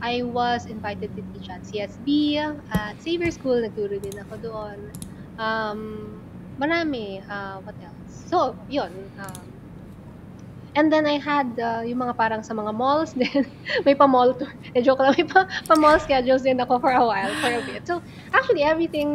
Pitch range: 215-275 Hz